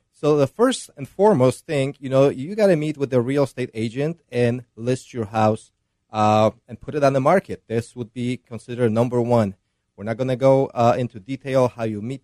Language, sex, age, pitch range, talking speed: English, male, 30-49, 110-135 Hz, 215 wpm